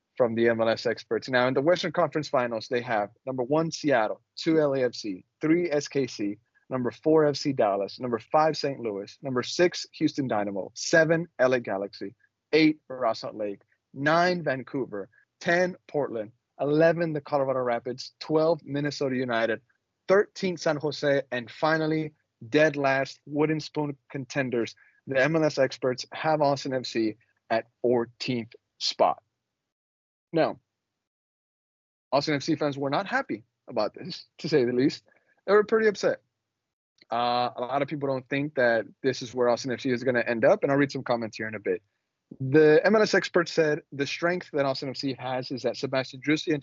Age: 30-49